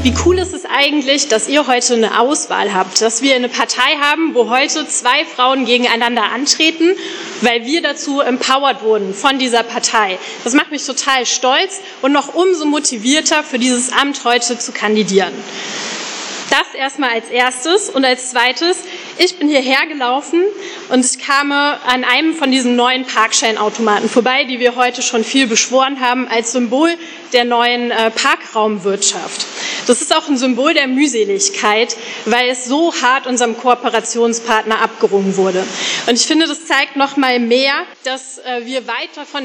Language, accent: German, German